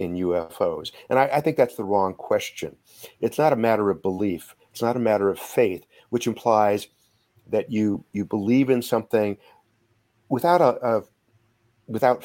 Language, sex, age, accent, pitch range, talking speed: English, male, 50-69, American, 100-120 Hz, 165 wpm